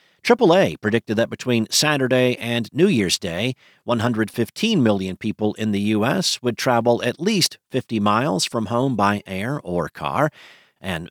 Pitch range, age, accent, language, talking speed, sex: 100-120 Hz, 50-69, American, English, 150 wpm, male